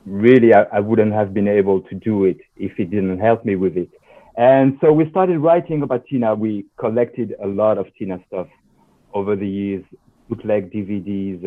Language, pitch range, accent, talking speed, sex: English, 100-125 Hz, French, 190 wpm, male